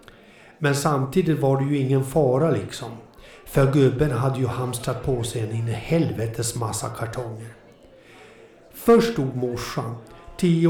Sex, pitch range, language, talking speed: male, 120-150 Hz, Swedish, 125 wpm